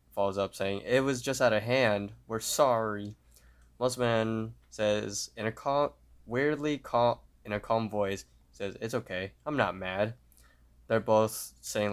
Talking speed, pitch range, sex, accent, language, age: 160 wpm, 100-115 Hz, male, American, English, 10-29